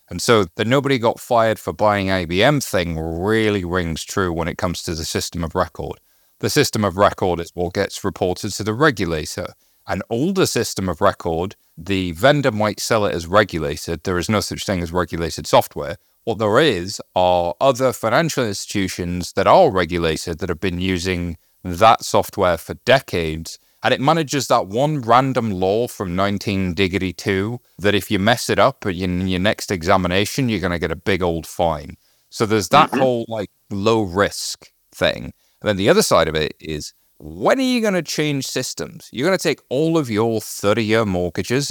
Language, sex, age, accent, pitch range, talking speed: English, male, 30-49, British, 90-115 Hz, 185 wpm